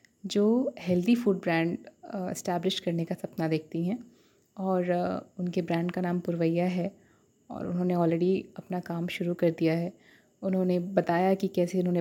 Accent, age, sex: native, 30-49, female